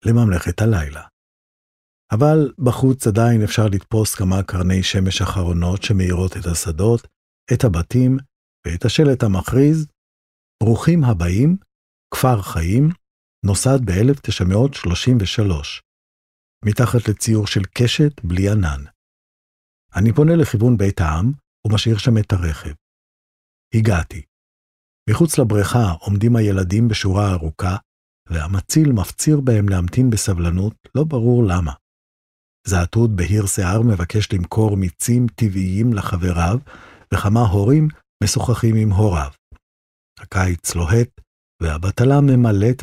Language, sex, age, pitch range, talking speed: Hebrew, male, 50-69, 90-120 Hz, 100 wpm